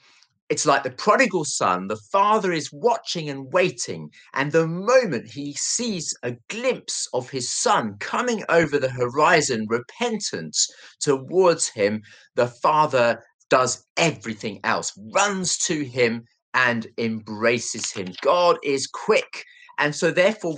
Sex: male